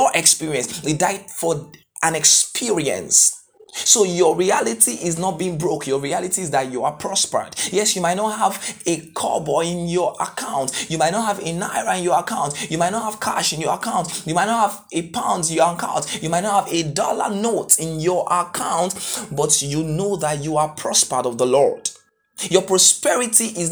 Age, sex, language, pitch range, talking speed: 20-39, male, English, 160-210 Hz, 200 wpm